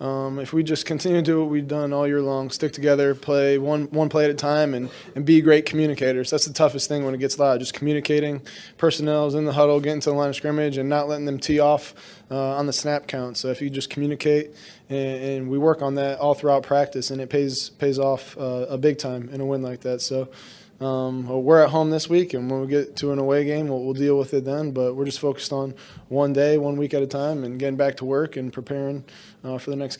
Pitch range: 135-150 Hz